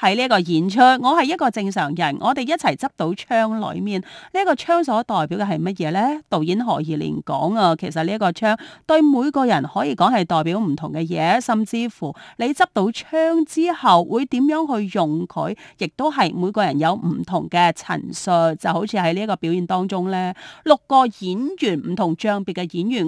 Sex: female